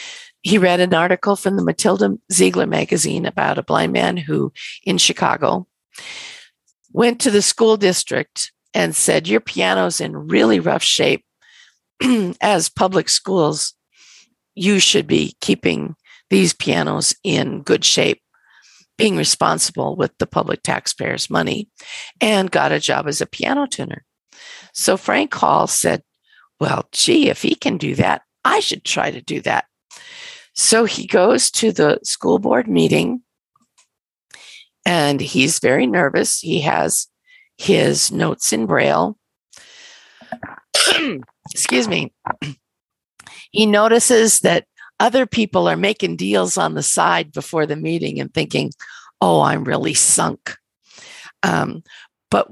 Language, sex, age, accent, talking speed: English, female, 50-69, American, 130 wpm